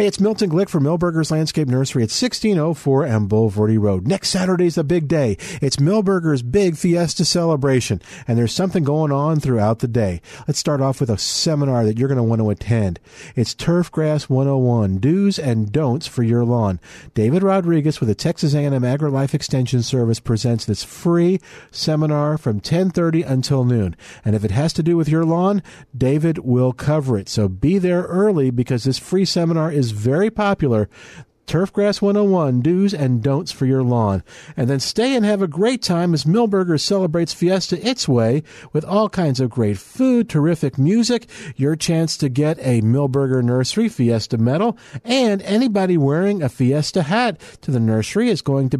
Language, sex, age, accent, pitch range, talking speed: English, male, 50-69, American, 125-175 Hz, 175 wpm